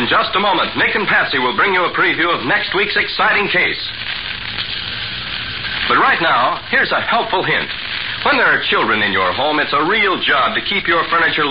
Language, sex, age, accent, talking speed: English, male, 60-79, American, 205 wpm